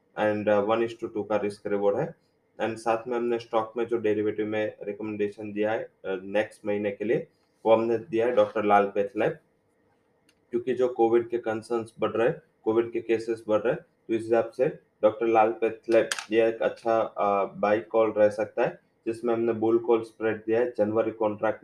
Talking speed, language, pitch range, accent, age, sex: 135 wpm, English, 105-115 Hz, Indian, 20-39, male